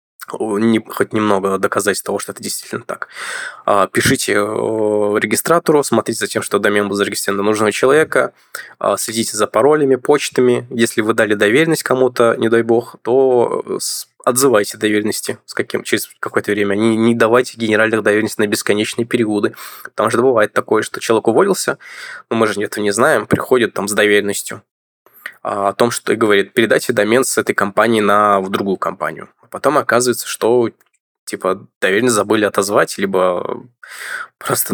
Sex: male